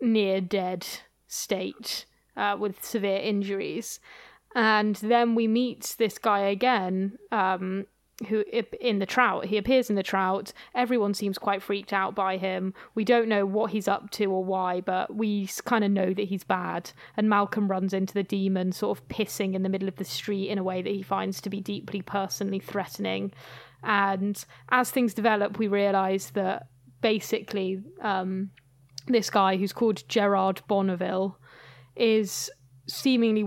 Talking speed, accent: 165 wpm, British